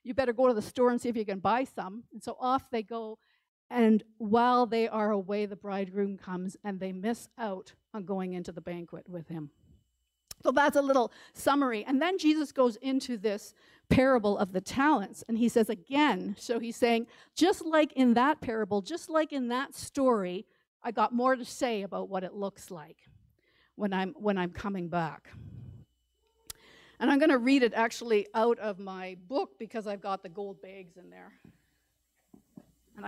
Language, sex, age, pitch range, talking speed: English, female, 50-69, 200-265 Hz, 190 wpm